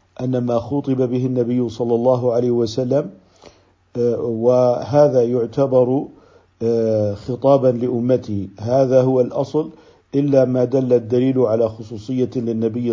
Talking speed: 105 wpm